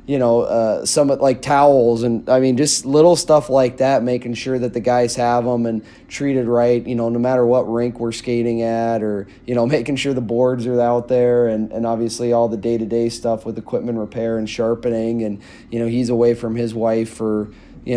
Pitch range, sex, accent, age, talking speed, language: 115-125 Hz, male, American, 30-49, 215 wpm, English